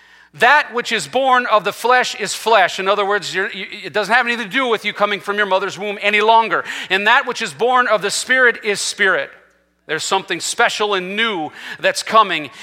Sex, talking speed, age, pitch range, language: male, 210 wpm, 40-59, 135-220 Hz, English